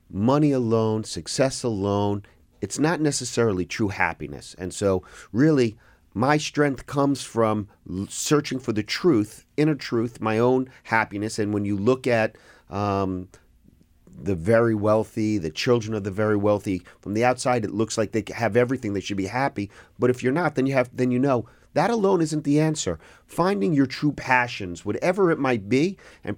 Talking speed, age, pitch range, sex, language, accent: 170 wpm, 40-59, 105-130 Hz, male, English, American